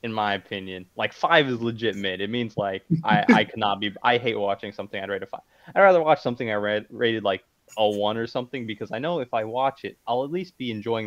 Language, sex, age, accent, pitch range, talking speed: English, male, 20-39, American, 95-115 Hz, 255 wpm